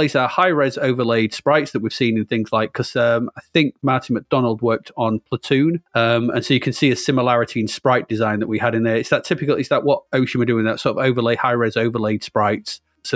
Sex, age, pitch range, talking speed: male, 30-49, 120-155 Hz, 235 wpm